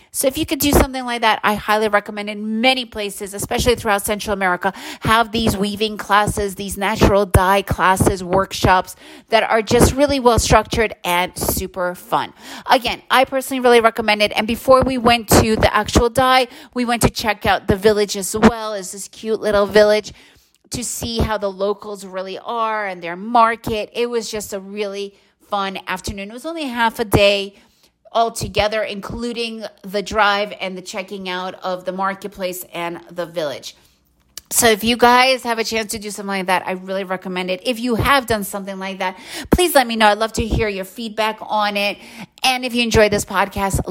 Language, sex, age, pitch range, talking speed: English, female, 30-49, 190-230 Hz, 195 wpm